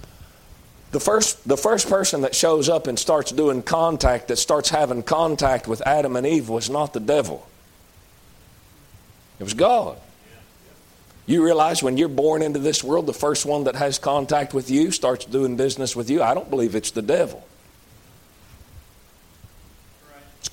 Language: English